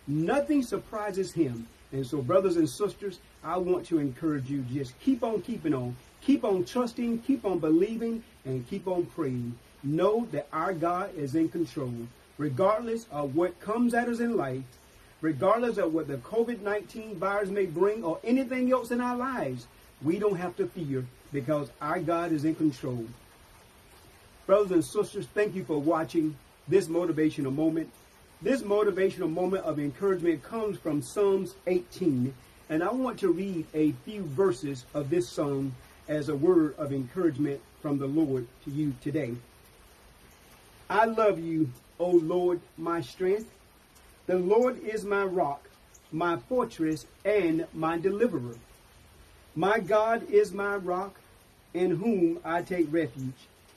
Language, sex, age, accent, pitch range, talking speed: English, male, 40-59, American, 145-205 Hz, 155 wpm